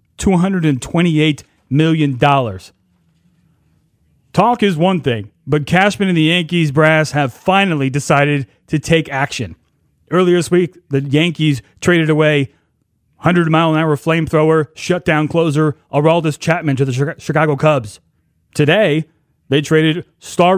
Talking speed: 120 wpm